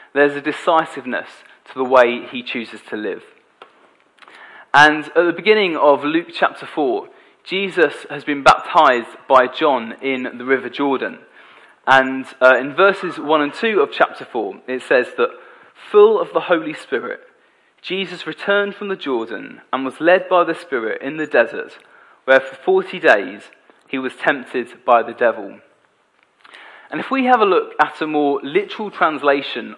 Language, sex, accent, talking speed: English, male, British, 165 wpm